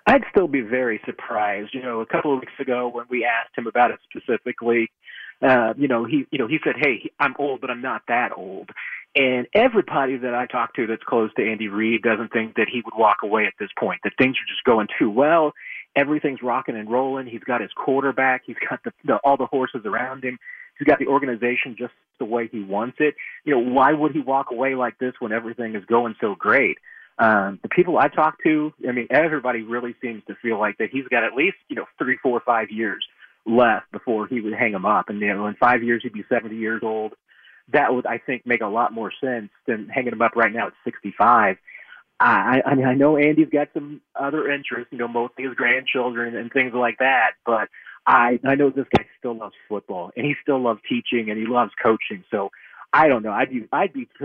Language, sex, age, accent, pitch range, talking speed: English, male, 30-49, American, 115-140 Hz, 230 wpm